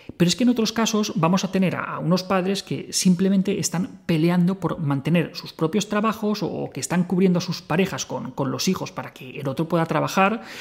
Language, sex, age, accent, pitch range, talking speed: Spanish, male, 30-49, Spanish, 150-190 Hz, 215 wpm